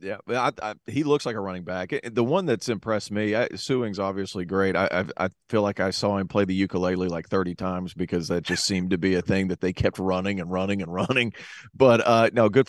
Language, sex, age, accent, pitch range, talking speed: English, male, 30-49, American, 95-115 Hz, 245 wpm